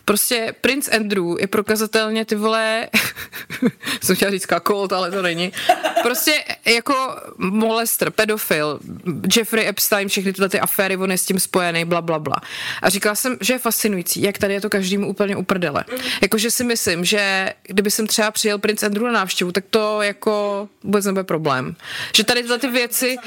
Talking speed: 175 wpm